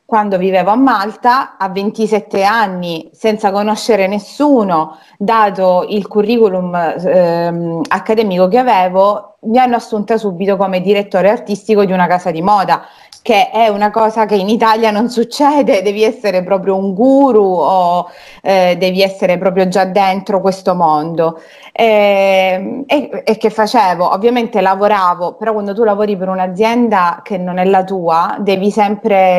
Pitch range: 180-215 Hz